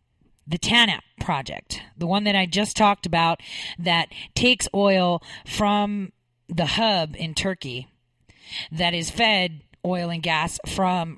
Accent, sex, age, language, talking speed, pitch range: American, female, 40-59, English, 135 wpm, 140-205 Hz